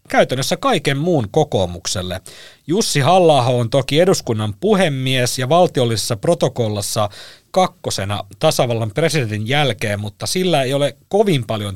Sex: male